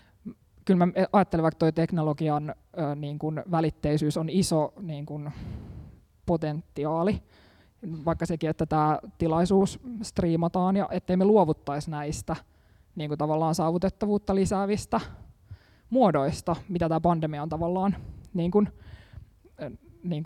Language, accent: Finnish, native